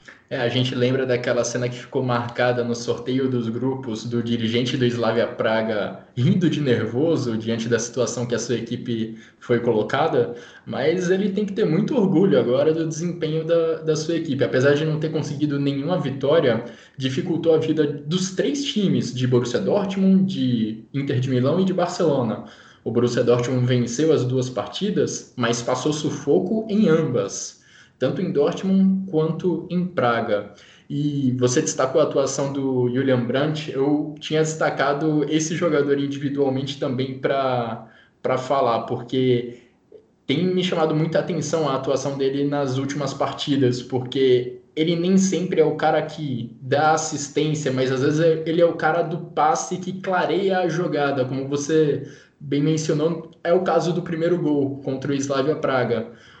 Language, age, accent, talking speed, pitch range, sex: Portuguese, 20-39, Brazilian, 160 wpm, 125-160 Hz, male